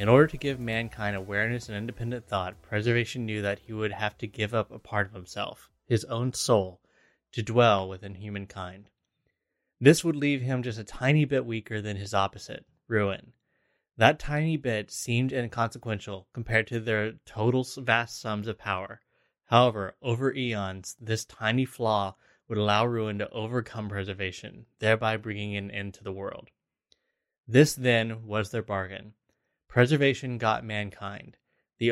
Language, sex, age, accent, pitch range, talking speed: English, male, 20-39, American, 100-120 Hz, 155 wpm